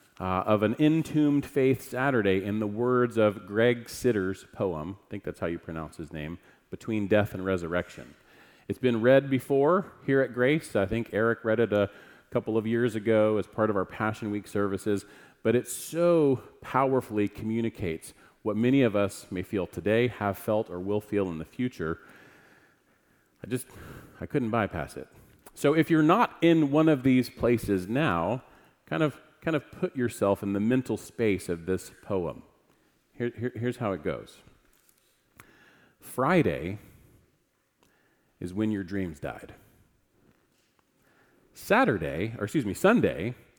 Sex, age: male, 40-59